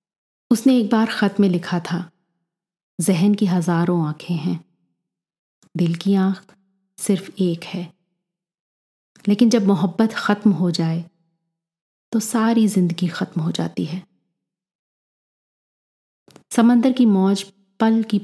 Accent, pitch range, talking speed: native, 170-200 Hz, 120 wpm